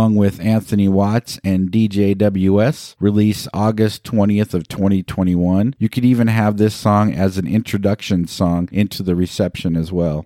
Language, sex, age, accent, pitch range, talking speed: English, male, 50-69, American, 95-115 Hz, 150 wpm